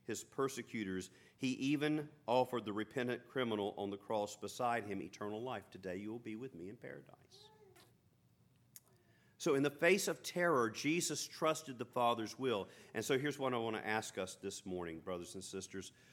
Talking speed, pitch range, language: 180 wpm, 100-130 Hz, English